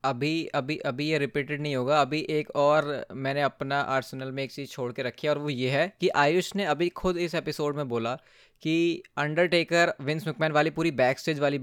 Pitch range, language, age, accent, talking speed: 140-175 Hz, Hindi, 20-39, native, 210 wpm